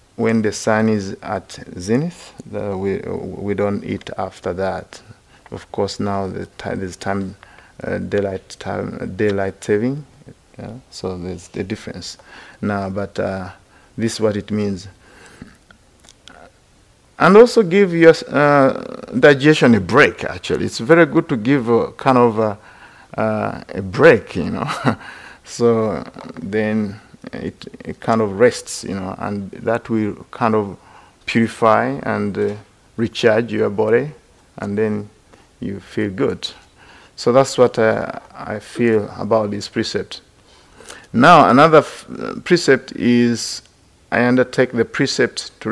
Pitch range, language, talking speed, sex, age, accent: 105-120 Hz, English, 135 wpm, male, 50-69, French